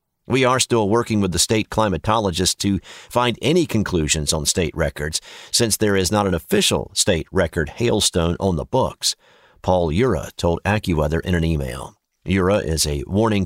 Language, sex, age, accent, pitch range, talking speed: English, male, 50-69, American, 90-125 Hz, 170 wpm